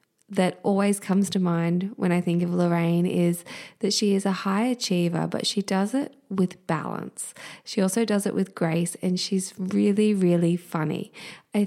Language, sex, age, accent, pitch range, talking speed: English, female, 20-39, Australian, 170-210 Hz, 180 wpm